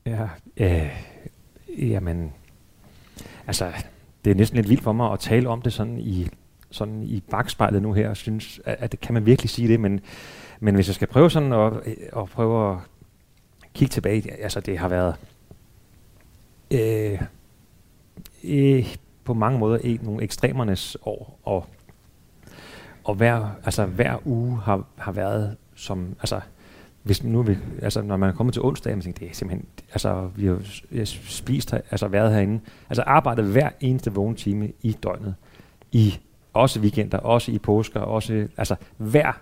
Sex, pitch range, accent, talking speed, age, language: male, 100-115 Hz, native, 155 wpm, 30-49, Danish